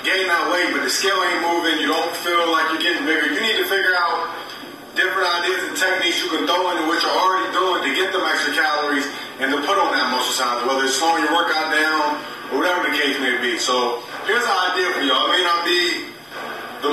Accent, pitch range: American, 135-175 Hz